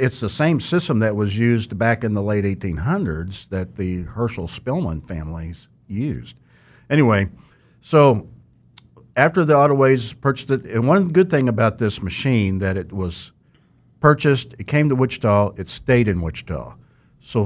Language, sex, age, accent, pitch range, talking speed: English, male, 50-69, American, 100-125 Hz, 155 wpm